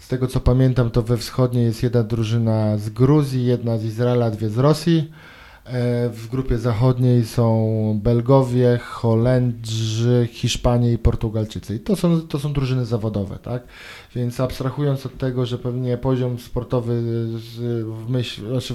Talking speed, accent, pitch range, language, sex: 145 wpm, native, 115-130 Hz, Polish, male